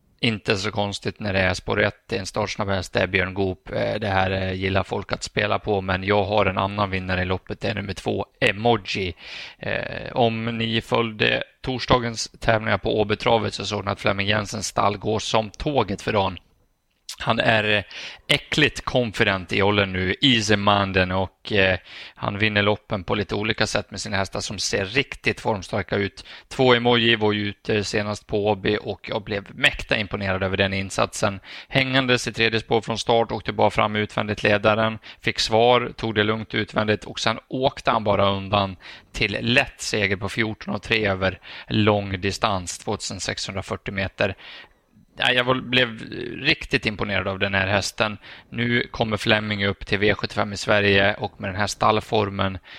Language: Swedish